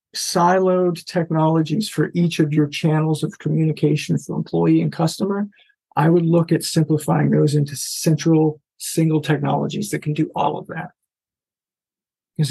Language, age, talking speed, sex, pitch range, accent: English, 50-69, 145 wpm, male, 160-195 Hz, American